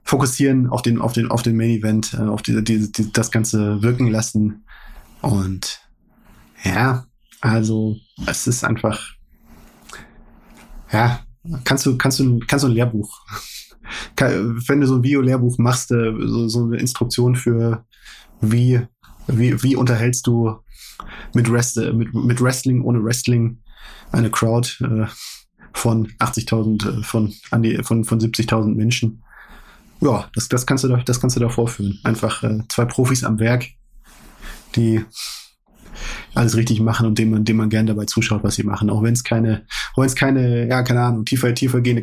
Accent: German